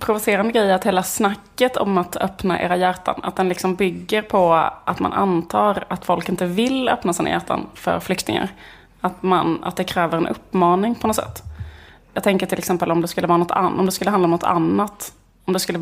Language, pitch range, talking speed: Swedish, 165-190 Hz, 215 wpm